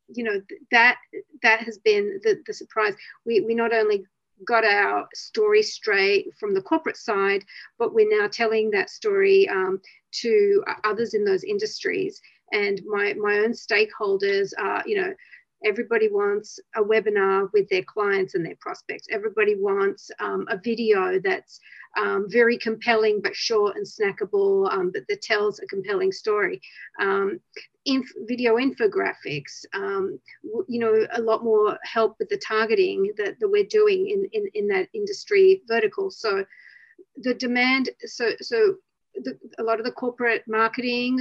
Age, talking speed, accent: 40-59, 155 wpm, Australian